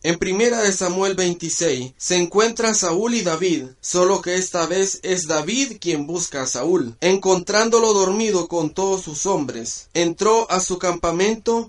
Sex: male